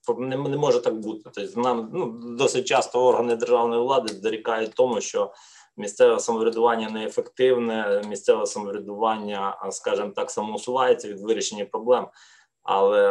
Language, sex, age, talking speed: Ukrainian, male, 20-39, 125 wpm